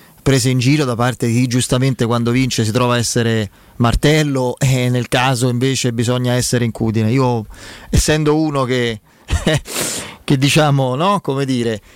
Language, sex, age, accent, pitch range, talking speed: Italian, male, 30-49, native, 125-150 Hz, 160 wpm